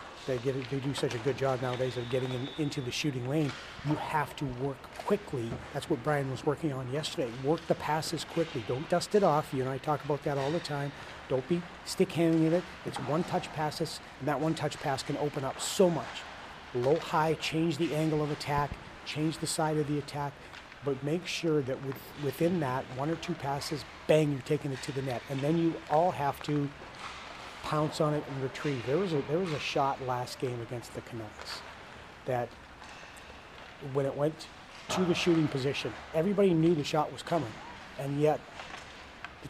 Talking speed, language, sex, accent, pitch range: 195 wpm, English, male, American, 135-160 Hz